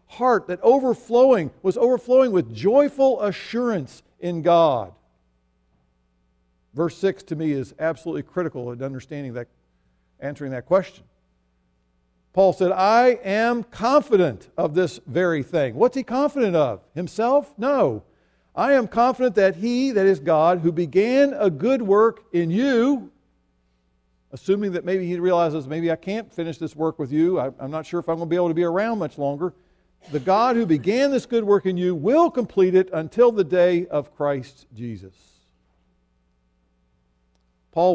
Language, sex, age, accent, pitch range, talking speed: English, male, 50-69, American, 130-200 Hz, 155 wpm